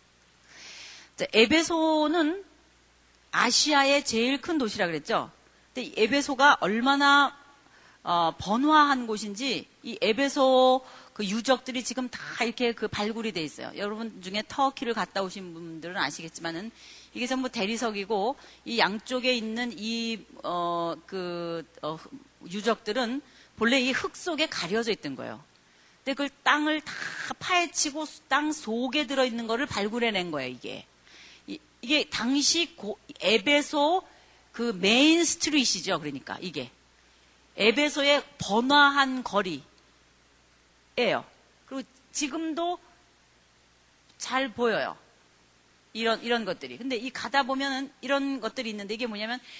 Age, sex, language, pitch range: 40-59, female, Korean, 185-280 Hz